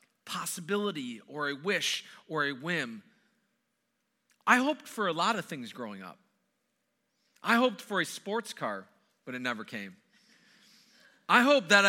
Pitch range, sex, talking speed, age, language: 170-240 Hz, male, 145 wpm, 40-59, English